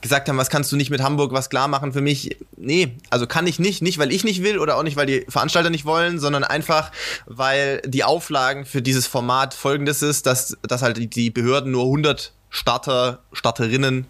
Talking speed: 215 wpm